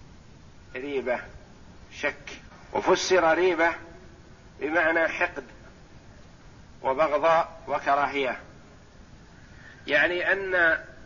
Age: 50-69